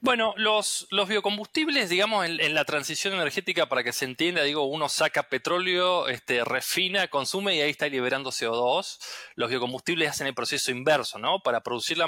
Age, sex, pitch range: 20-39, male, 130-180 Hz